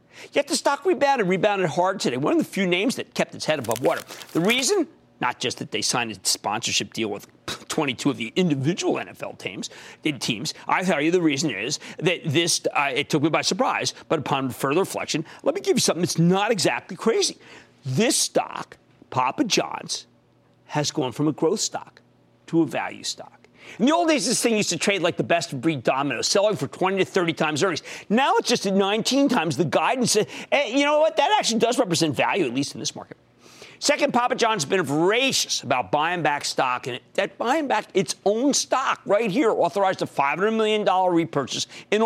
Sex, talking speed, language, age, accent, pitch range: male, 205 wpm, English, 50-69, American, 165-275 Hz